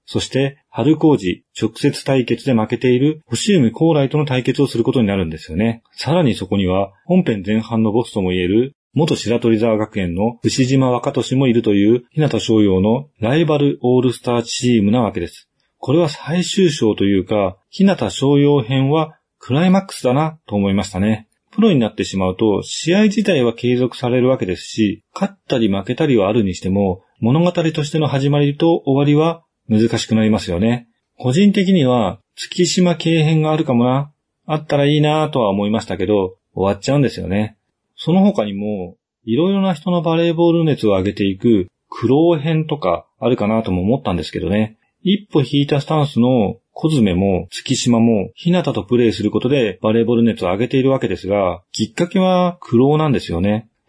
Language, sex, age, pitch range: Japanese, male, 40-59, 110-155 Hz